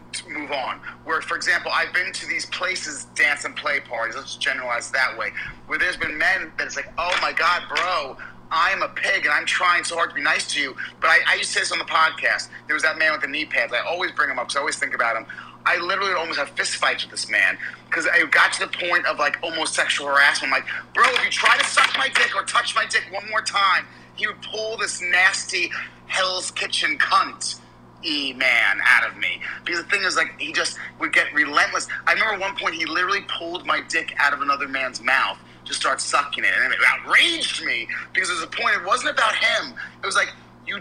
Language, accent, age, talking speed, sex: English, American, 30-49, 245 wpm, male